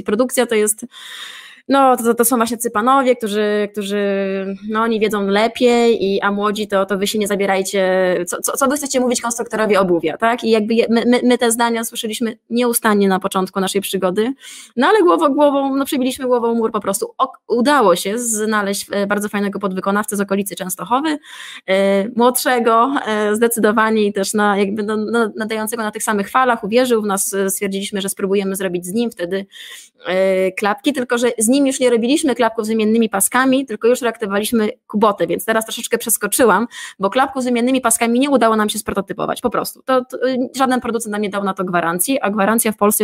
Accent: native